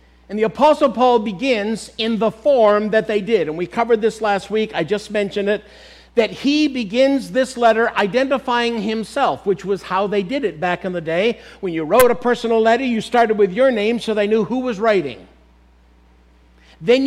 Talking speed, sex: 195 wpm, male